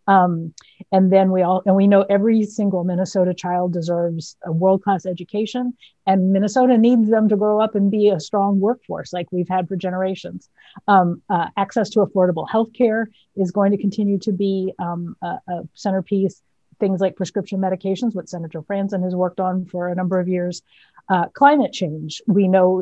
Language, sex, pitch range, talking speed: English, female, 180-205 Hz, 180 wpm